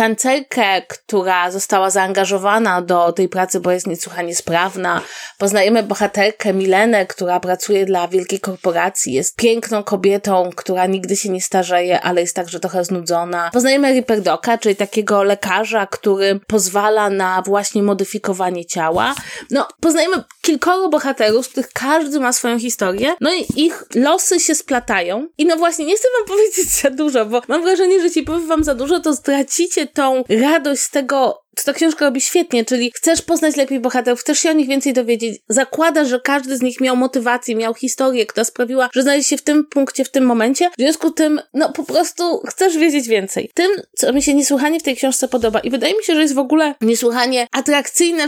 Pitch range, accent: 200-300 Hz, native